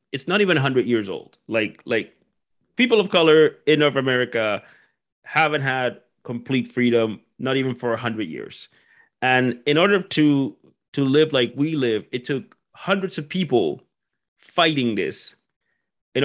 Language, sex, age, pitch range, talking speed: English, male, 30-49, 115-145 Hz, 155 wpm